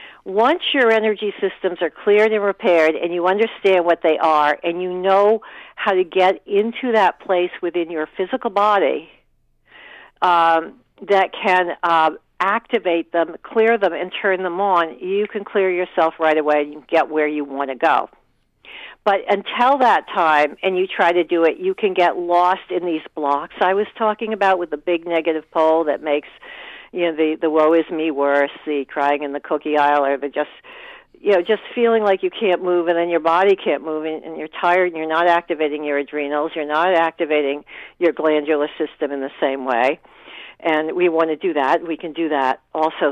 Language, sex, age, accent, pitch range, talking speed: English, female, 50-69, American, 155-200 Hz, 195 wpm